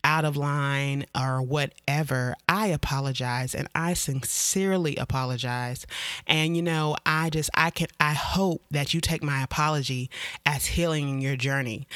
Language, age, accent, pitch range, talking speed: English, 30-49, American, 145-170 Hz, 150 wpm